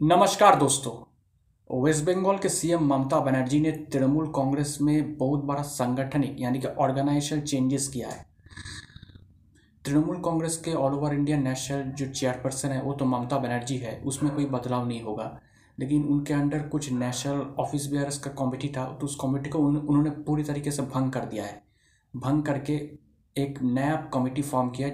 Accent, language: native, Hindi